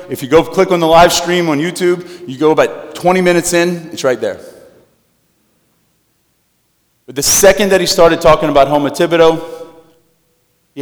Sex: male